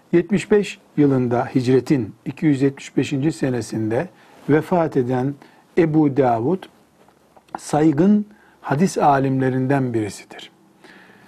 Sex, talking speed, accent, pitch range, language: male, 70 wpm, native, 140-185 Hz, Turkish